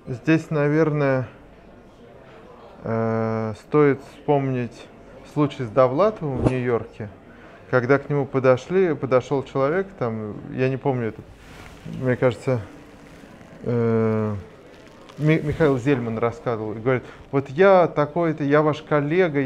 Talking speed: 110 wpm